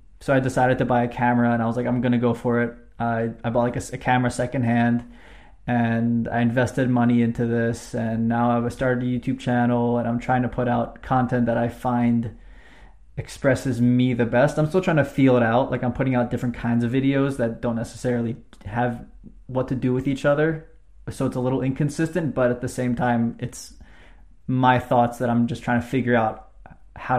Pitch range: 120-125 Hz